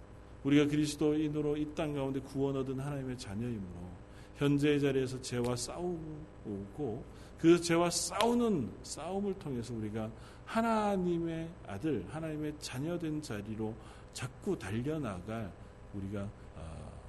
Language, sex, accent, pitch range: Korean, male, native, 105-170 Hz